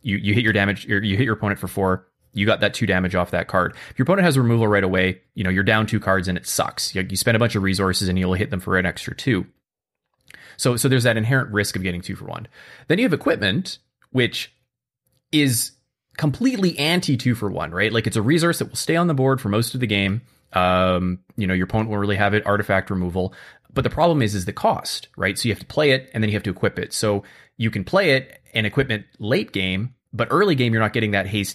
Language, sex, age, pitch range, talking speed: English, male, 20-39, 95-120 Hz, 265 wpm